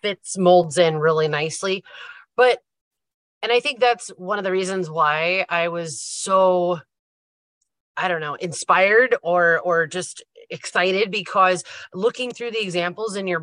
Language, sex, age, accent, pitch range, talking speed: English, female, 30-49, American, 170-205 Hz, 145 wpm